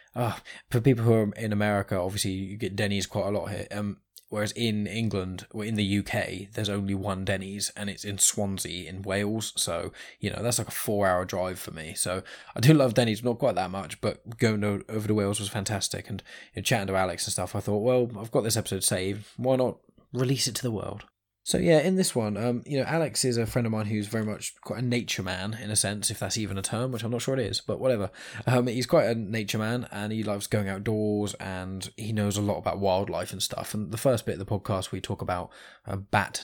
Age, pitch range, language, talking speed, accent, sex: 10-29, 100-115 Hz, English, 245 wpm, British, male